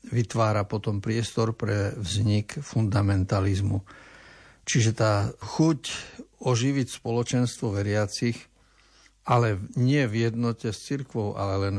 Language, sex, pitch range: Slovak, male, 105-120 Hz